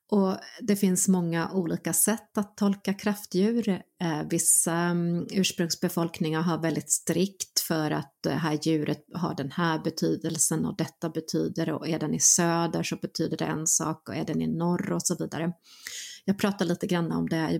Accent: native